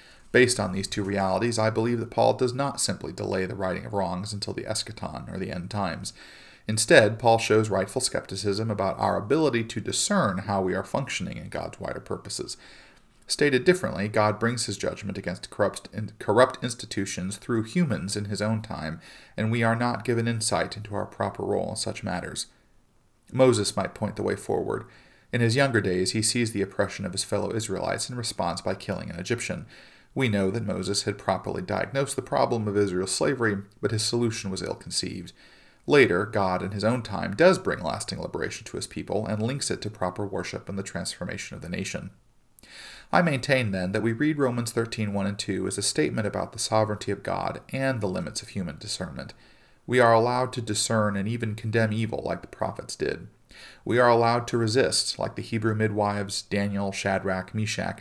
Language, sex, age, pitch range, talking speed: English, male, 40-59, 100-120 Hz, 195 wpm